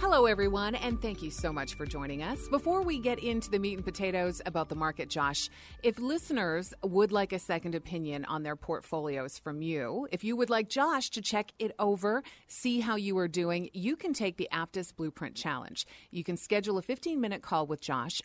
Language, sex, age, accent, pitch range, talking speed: English, female, 40-59, American, 160-220 Hz, 205 wpm